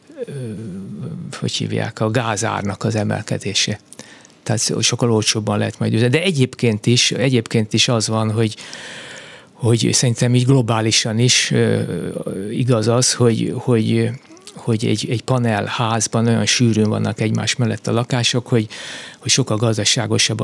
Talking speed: 130 wpm